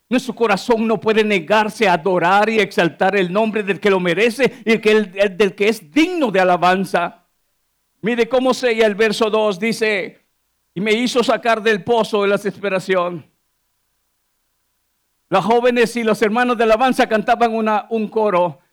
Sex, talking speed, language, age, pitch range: male, 160 wpm, Spanish, 50-69, 205-265 Hz